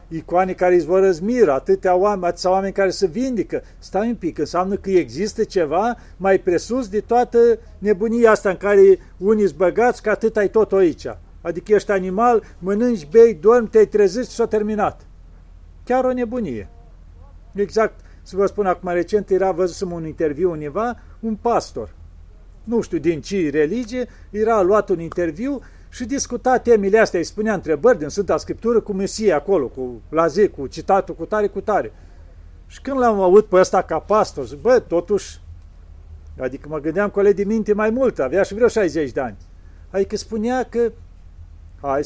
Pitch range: 150-220 Hz